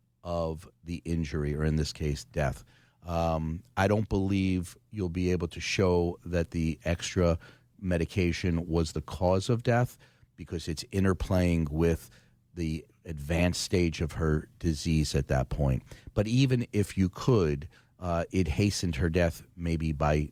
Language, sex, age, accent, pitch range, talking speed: English, male, 40-59, American, 75-85 Hz, 150 wpm